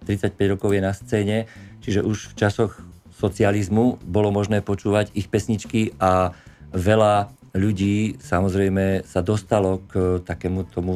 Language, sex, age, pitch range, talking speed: Slovak, male, 50-69, 95-110 Hz, 130 wpm